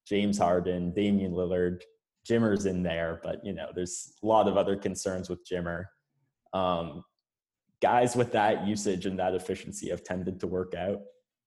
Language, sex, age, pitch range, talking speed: English, male, 20-39, 90-100 Hz, 160 wpm